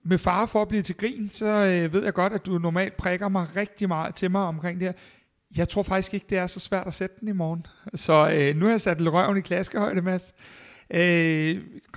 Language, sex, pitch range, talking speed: Danish, male, 155-190 Hz, 240 wpm